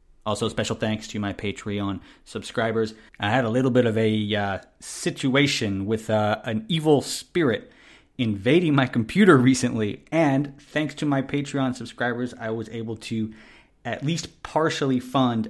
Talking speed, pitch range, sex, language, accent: 150 wpm, 105-135 Hz, male, English, American